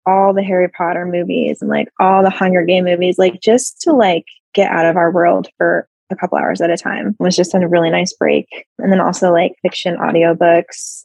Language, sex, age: English, female, 20-39